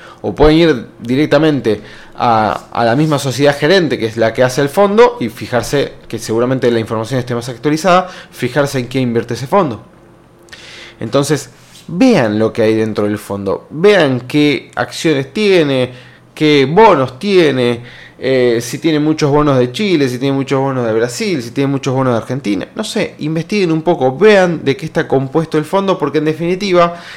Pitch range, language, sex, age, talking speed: 120-160 Hz, Spanish, male, 20-39, 180 wpm